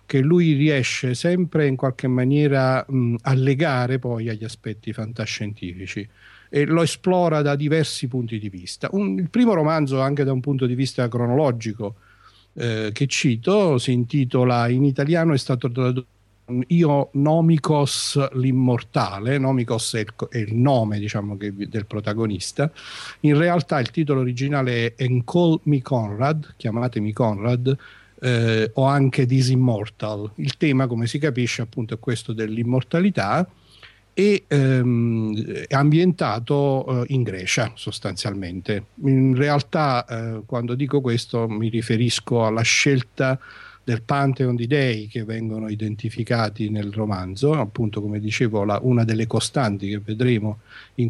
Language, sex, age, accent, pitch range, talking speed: Italian, male, 50-69, native, 115-140 Hz, 135 wpm